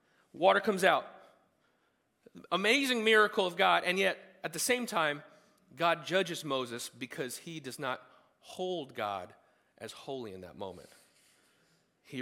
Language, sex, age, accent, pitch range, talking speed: English, male, 30-49, American, 155-245 Hz, 140 wpm